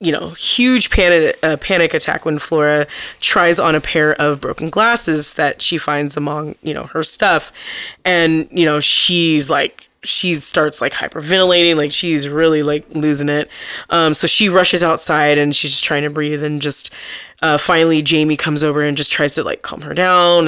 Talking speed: 190 wpm